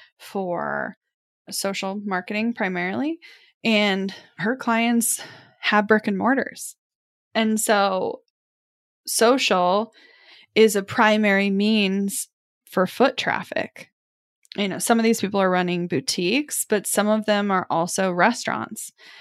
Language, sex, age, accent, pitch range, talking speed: English, female, 10-29, American, 195-250 Hz, 115 wpm